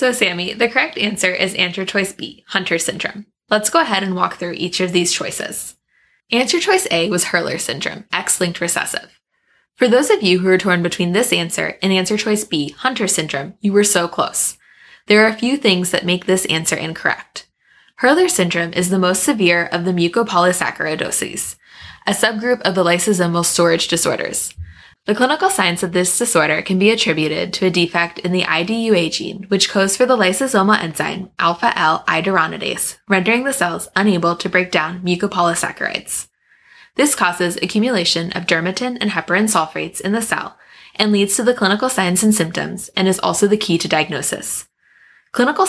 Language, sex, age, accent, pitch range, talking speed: English, female, 10-29, American, 170-215 Hz, 175 wpm